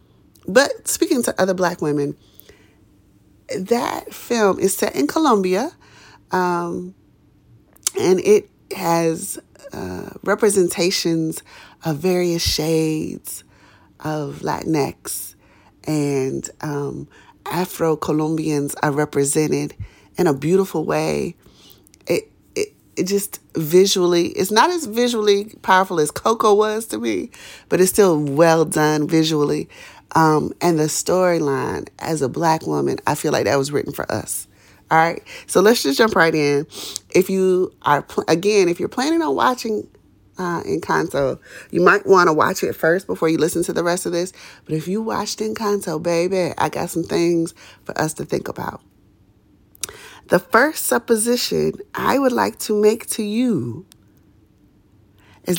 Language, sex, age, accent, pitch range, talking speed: English, female, 30-49, American, 145-200 Hz, 140 wpm